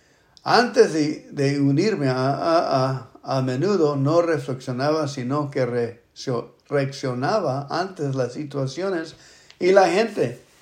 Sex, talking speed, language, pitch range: male, 115 wpm, English, 135-170 Hz